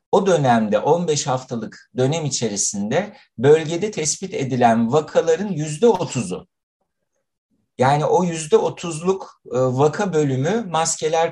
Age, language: 60-79, Turkish